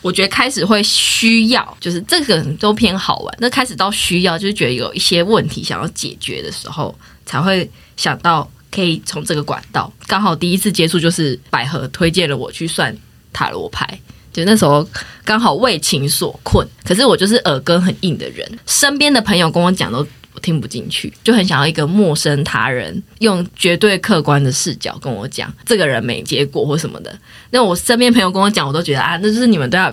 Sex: female